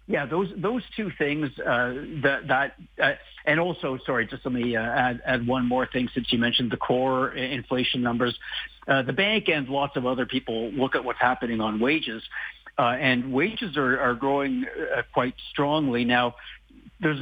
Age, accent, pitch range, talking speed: 50-69, American, 115-140 Hz, 190 wpm